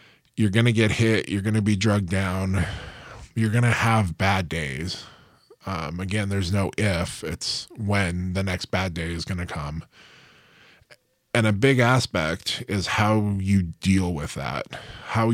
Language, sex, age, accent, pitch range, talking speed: English, male, 20-39, American, 95-115 Hz, 170 wpm